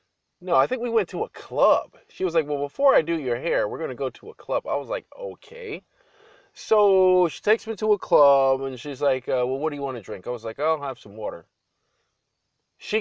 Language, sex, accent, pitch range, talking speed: English, male, American, 125-185 Hz, 250 wpm